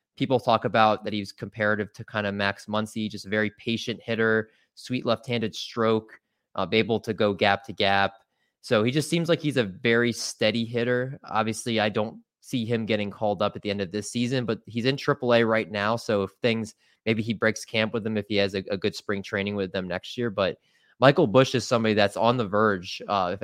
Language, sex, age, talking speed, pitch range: English, male, 20-39, 225 wpm, 105-125 Hz